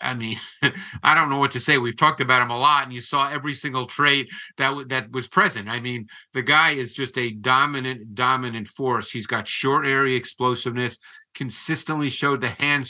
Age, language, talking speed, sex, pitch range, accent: 50-69, English, 200 wpm, male, 125-145 Hz, American